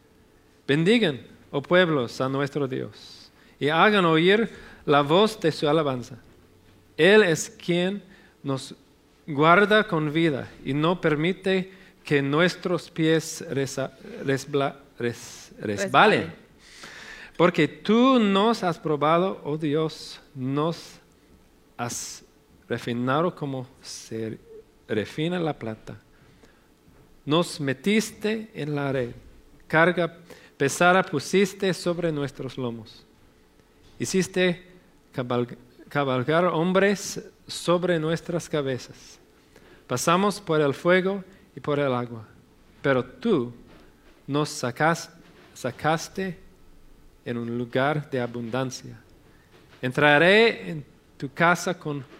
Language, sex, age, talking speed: English, male, 40-59, 95 wpm